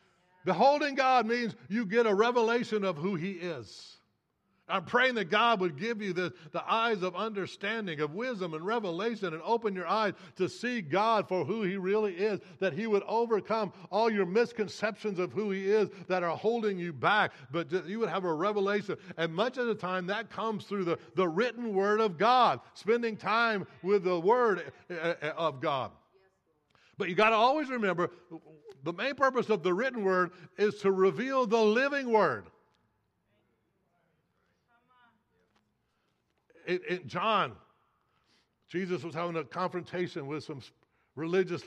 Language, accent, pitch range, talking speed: English, American, 180-230 Hz, 160 wpm